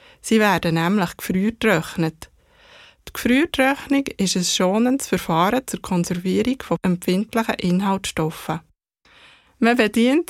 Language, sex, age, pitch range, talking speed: German, female, 20-39, 185-245 Hz, 100 wpm